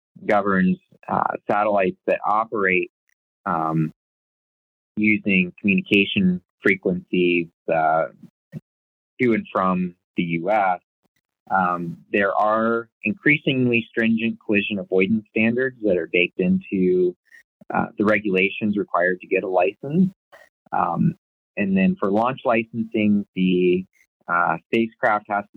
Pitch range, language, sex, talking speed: 90-115 Hz, English, male, 110 wpm